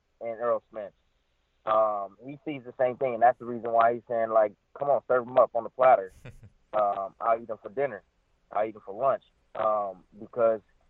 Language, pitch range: English, 105-140 Hz